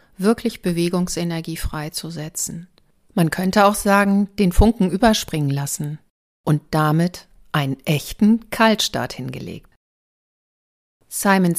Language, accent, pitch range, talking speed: German, German, 155-200 Hz, 95 wpm